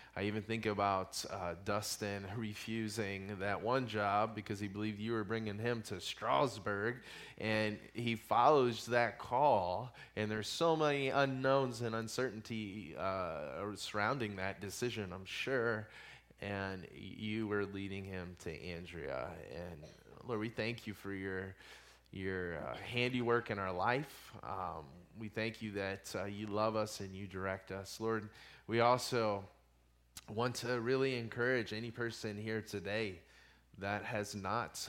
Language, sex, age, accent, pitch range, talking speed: English, male, 20-39, American, 95-115 Hz, 145 wpm